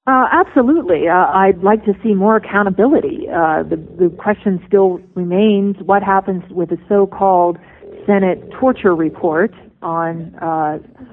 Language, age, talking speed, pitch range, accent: English, 40-59, 135 wpm, 170-215 Hz, American